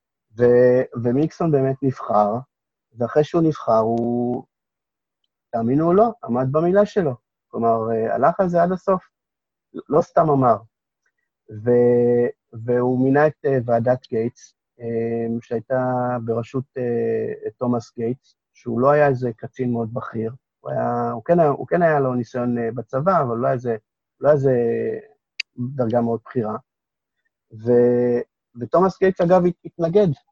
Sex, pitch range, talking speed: male, 115-150 Hz, 125 wpm